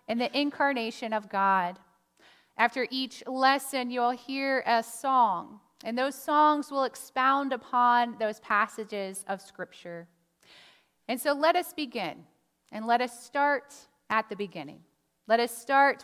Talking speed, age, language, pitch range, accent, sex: 140 wpm, 30-49, English, 220-275 Hz, American, female